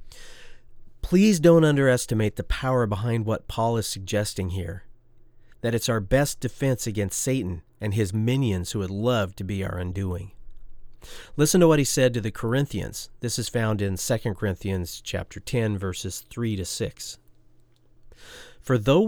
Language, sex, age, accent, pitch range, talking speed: English, male, 40-59, American, 100-125 Hz, 155 wpm